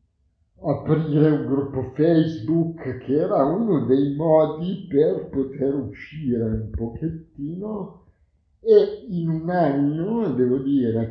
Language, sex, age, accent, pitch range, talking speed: Italian, male, 60-79, native, 110-140 Hz, 110 wpm